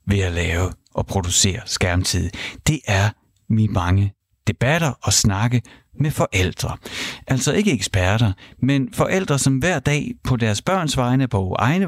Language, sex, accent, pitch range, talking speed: Danish, male, native, 100-140 Hz, 145 wpm